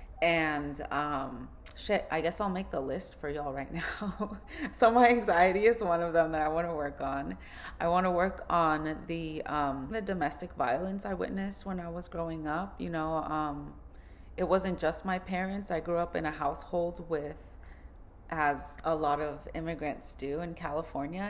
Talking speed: 185 wpm